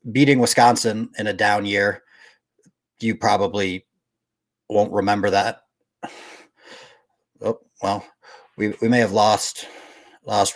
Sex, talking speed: male, 110 wpm